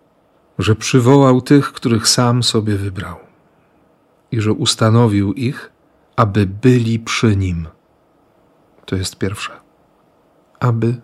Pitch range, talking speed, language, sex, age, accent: 100-120 Hz, 105 wpm, Polish, male, 40-59, native